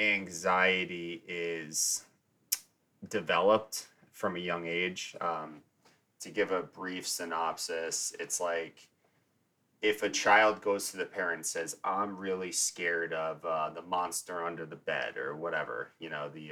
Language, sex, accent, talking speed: English, male, American, 140 wpm